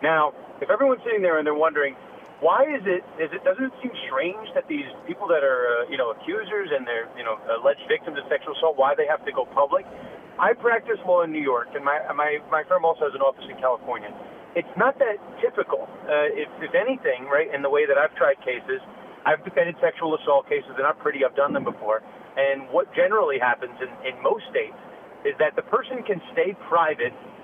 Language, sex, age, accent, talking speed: English, male, 40-59, American, 220 wpm